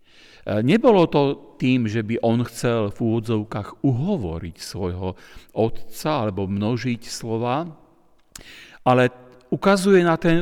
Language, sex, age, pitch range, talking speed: Slovak, male, 50-69, 105-150 Hz, 110 wpm